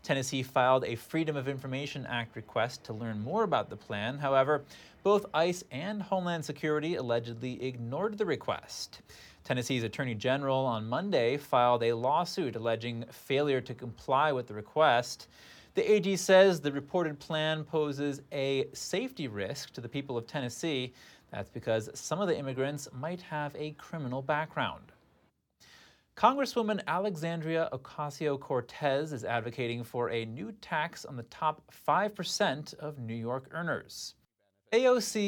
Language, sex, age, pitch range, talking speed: English, male, 30-49, 125-165 Hz, 140 wpm